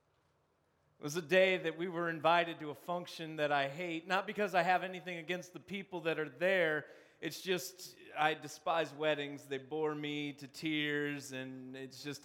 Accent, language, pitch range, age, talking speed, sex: American, English, 140-175 Hz, 30-49, 185 wpm, male